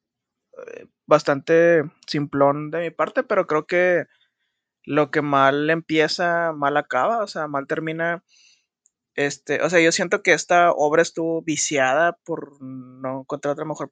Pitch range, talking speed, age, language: 145-170 Hz, 140 wpm, 20-39, Spanish